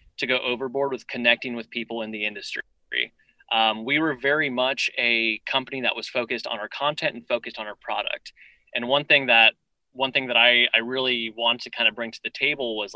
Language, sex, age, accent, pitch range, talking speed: English, male, 20-39, American, 115-135 Hz, 220 wpm